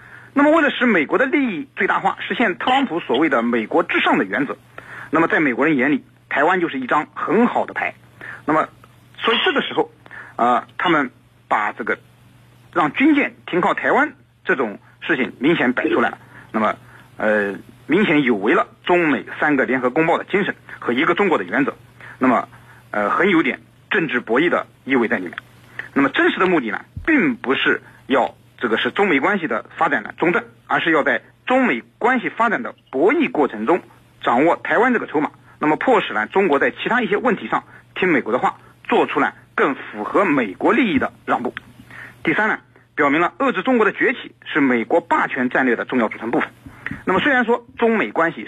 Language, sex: Chinese, male